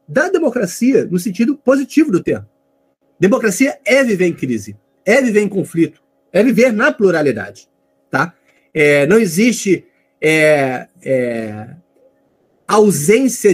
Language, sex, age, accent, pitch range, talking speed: Portuguese, male, 40-59, Brazilian, 155-225 Hz, 100 wpm